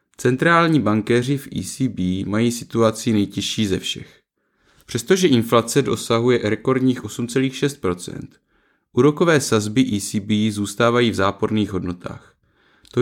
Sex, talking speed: male, 100 wpm